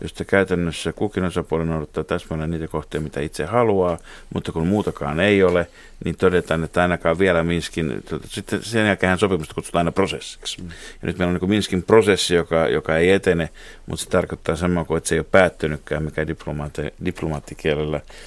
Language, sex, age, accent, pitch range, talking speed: Finnish, male, 50-69, native, 80-95 Hz, 170 wpm